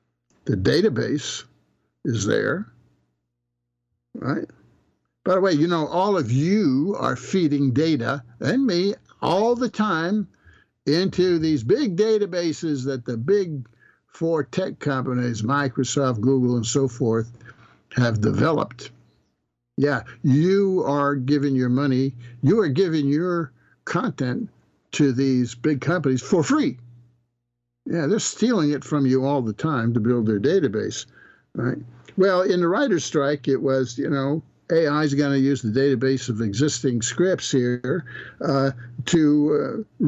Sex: male